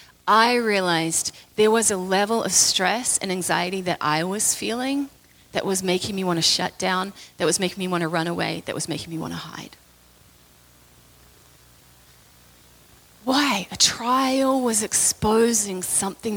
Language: English